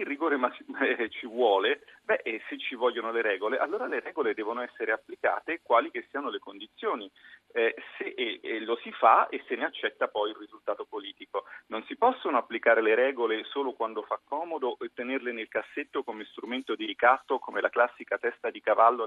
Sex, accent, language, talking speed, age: male, native, Italian, 190 wpm, 40-59